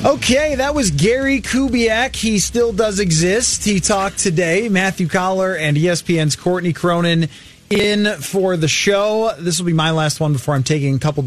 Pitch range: 155-200 Hz